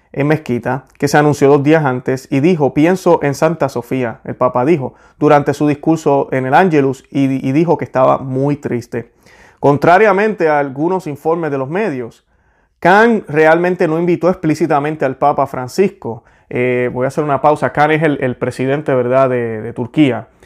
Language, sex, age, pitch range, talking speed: Spanish, male, 30-49, 130-170 Hz, 175 wpm